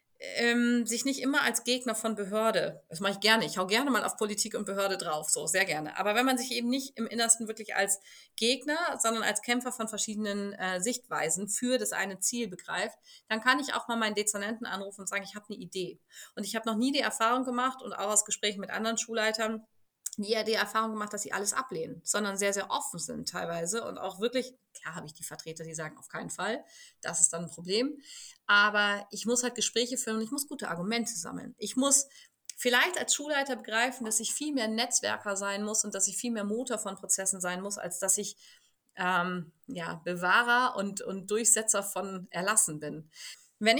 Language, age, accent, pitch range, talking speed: German, 30-49, German, 195-245 Hz, 210 wpm